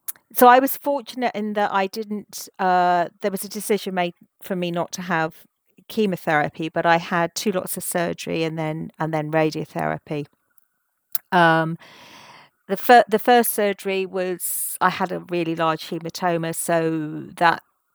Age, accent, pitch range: 40-59, British, 160-195 Hz